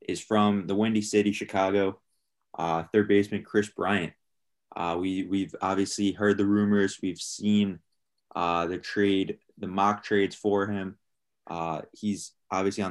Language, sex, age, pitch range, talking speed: English, male, 20-39, 90-100 Hz, 150 wpm